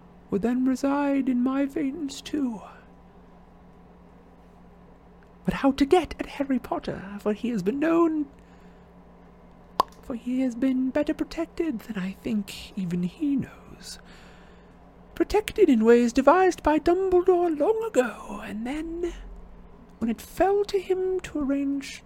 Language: English